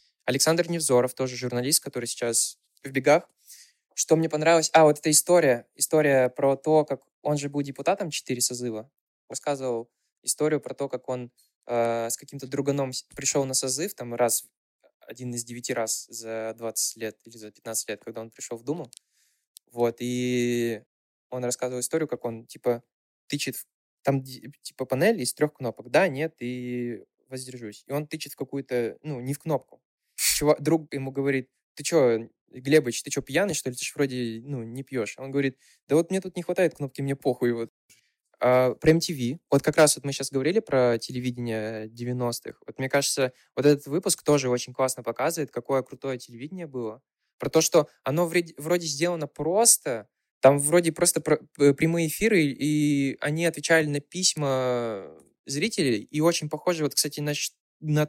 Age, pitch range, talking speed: 20-39, 125-150 Hz, 170 wpm